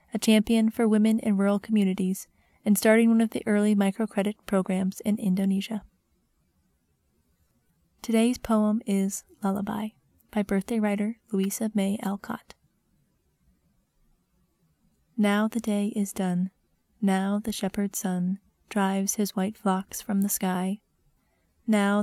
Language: English